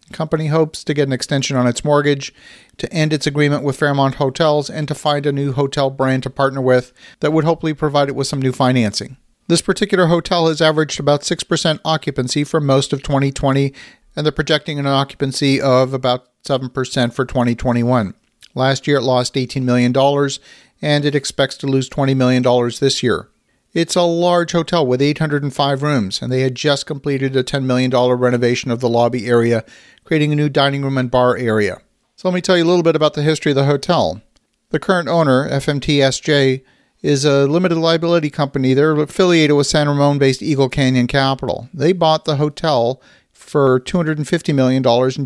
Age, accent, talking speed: 50-69, American, 185 wpm